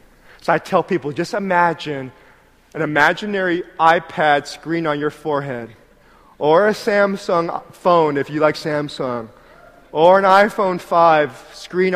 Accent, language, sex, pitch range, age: American, Korean, male, 175-245 Hz, 30-49